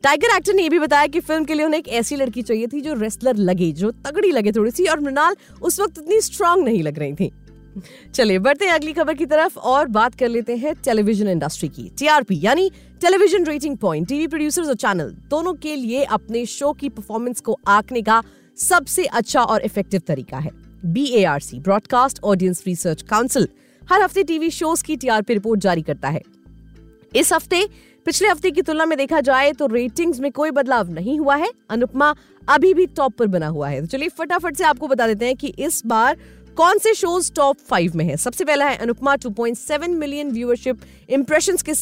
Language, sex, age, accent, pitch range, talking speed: Hindi, female, 30-49, native, 215-320 Hz, 120 wpm